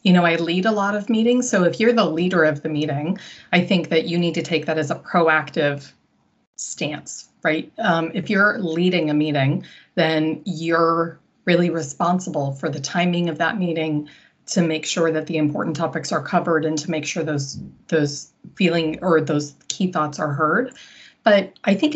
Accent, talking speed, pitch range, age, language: American, 190 wpm, 160-190 Hz, 30-49, English